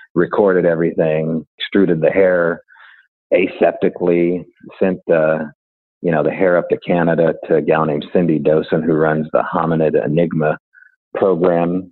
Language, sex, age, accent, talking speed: English, male, 40-59, American, 135 wpm